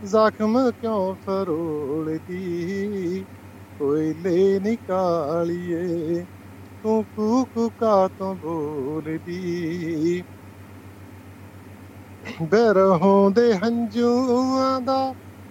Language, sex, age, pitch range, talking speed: Punjabi, male, 50-69, 165-230 Hz, 45 wpm